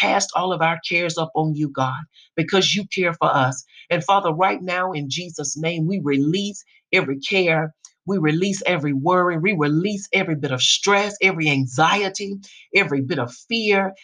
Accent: American